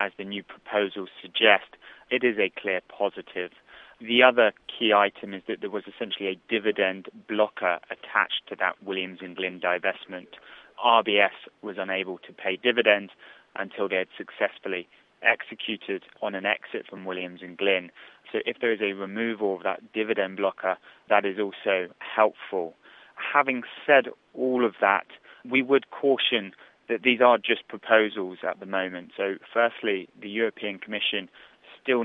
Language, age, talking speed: English, 20-39, 155 wpm